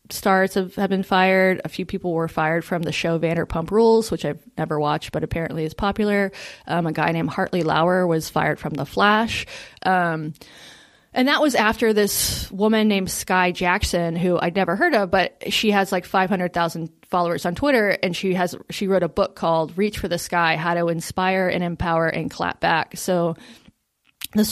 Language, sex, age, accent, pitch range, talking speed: English, female, 20-39, American, 170-200 Hz, 195 wpm